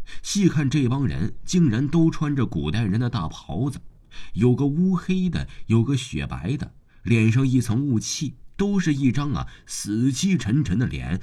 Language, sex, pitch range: Chinese, male, 80-120 Hz